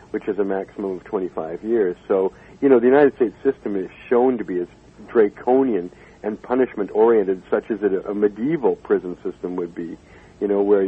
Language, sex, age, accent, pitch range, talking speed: English, male, 50-69, American, 95-125 Hz, 180 wpm